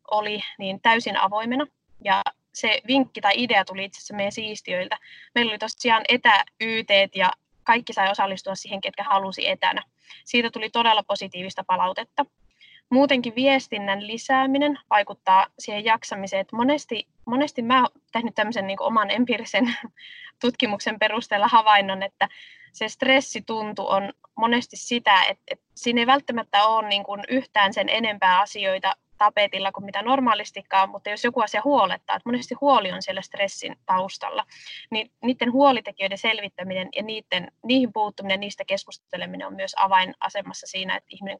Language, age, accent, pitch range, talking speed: Finnish, 20-39, native, 195-260 Hz, 140 wpm